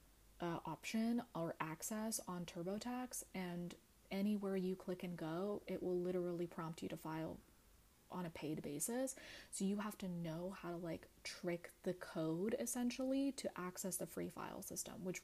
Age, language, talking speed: 20-39, English, 165 wpm